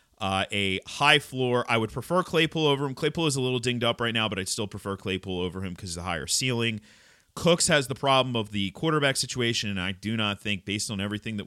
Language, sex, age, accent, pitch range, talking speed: English, male, 30-49, American, 110-160 Hz, 245 wpm